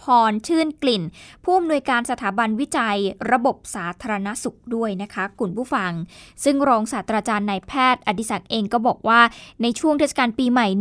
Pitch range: 220-265 Hz